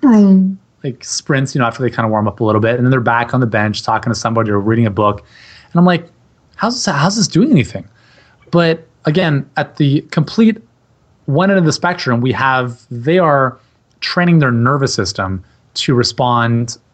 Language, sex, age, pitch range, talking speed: English, male, 30-49, 115-145 Hz, 195 wpm